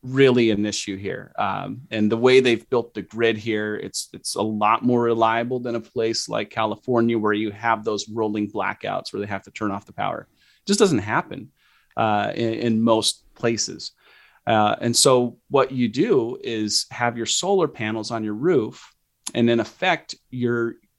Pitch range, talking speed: 110-130 Hz, 185 wpm